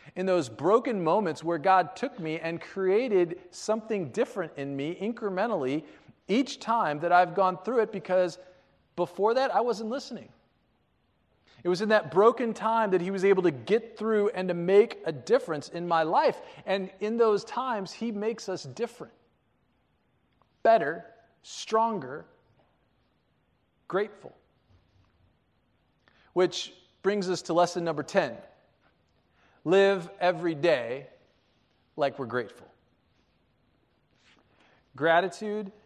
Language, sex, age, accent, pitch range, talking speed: English, male, 40-59, American, 125-190 Hz, 125 wpm